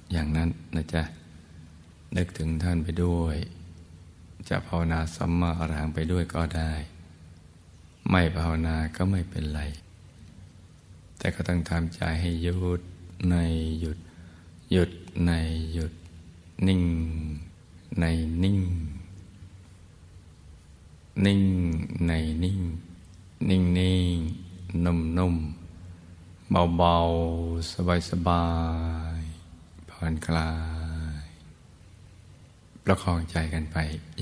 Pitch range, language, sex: 80-90 Hz, Thai, male